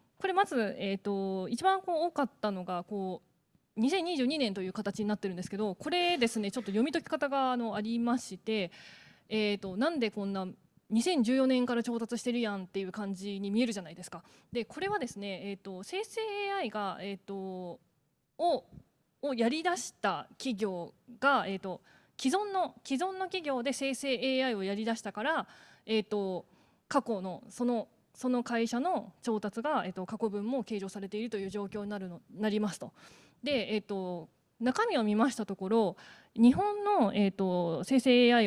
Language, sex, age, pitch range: Japanese, female, 20-39, 195-255 Hz